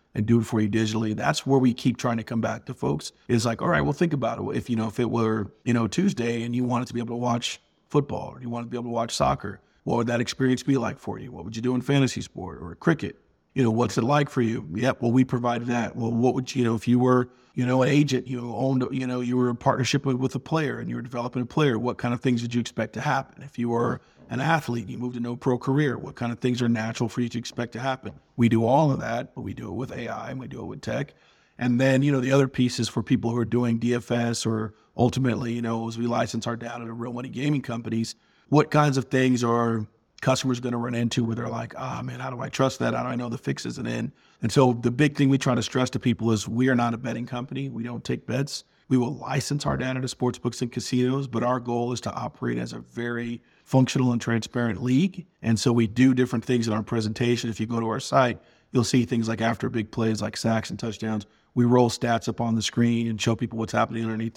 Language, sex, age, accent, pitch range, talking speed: English, male, 40-59, American, 115-130 Hz, 280 wpm